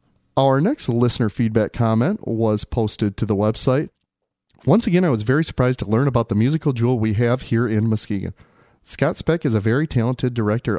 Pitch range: 105-130 Hz